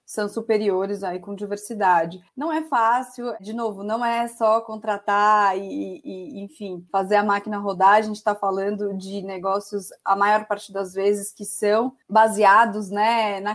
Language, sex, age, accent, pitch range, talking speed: Portuguese, female, 20-39, Brazilian, 205-260 Hz, 165 wpm